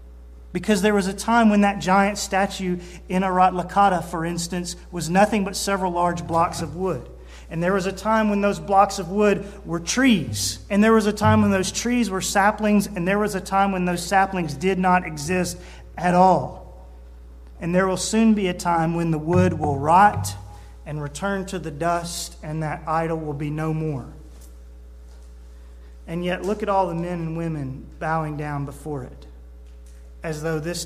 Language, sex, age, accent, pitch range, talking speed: English, male, 40-59, American, 130-185 Hz, 185 wpm